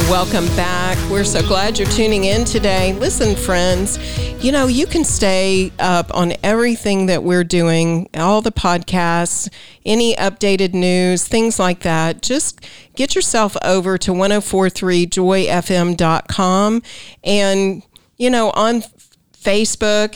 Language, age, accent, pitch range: English, 40-59, American, 175-210 Hz